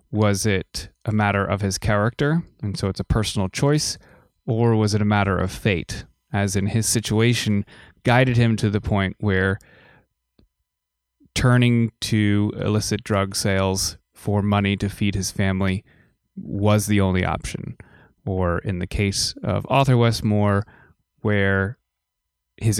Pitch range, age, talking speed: 95-115 Hz, 20-39, 140 wpm